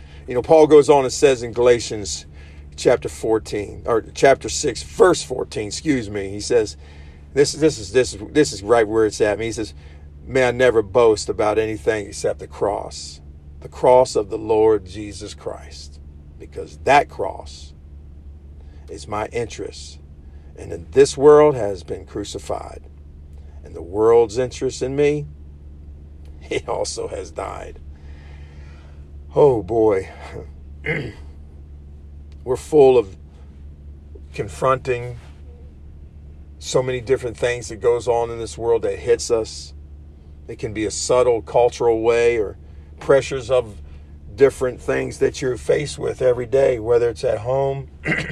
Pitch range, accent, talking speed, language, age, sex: 75-125 Hz, American, 140 wpm, English, 50-69, male